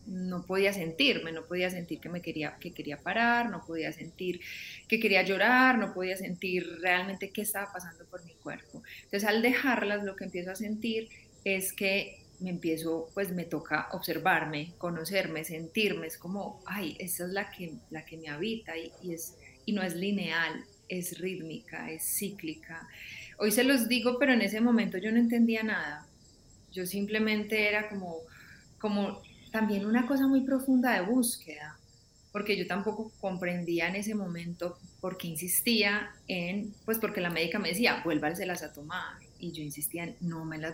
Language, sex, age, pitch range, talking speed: Spanish, female, 30-49, 165-210 Hz, 175 wpm